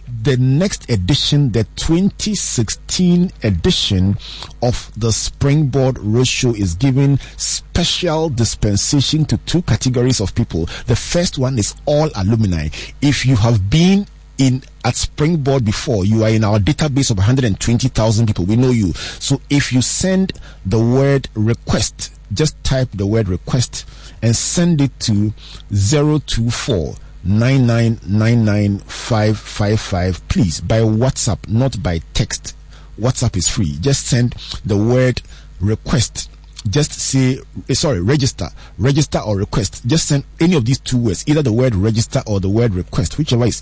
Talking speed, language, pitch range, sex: 145 wpm, English, 105-135 Hz, male